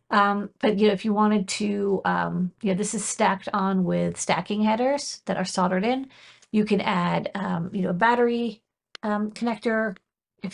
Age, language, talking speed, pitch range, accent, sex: 40-59, English, 190 wpm, 180-215 Hz, American, female